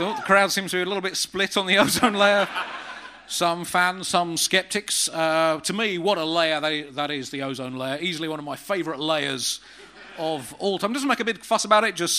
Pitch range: 150-195 Hz